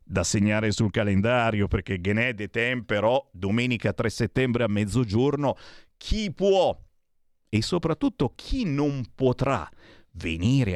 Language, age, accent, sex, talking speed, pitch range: Italian, 50-69, native, male, 115 wpm, 95-140 Hz